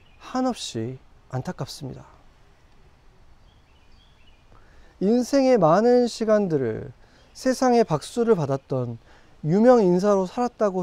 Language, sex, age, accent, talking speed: English, male, 40-59, Korean, 60 wpm